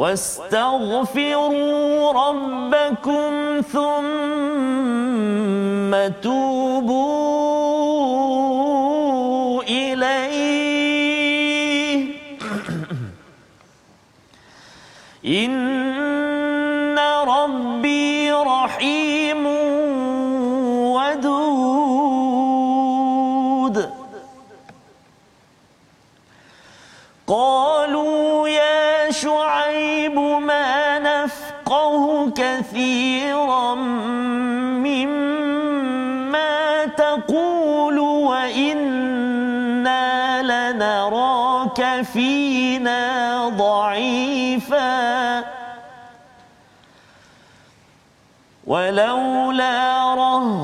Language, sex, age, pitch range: Malayalam, male, 40-59, 255-290 Hz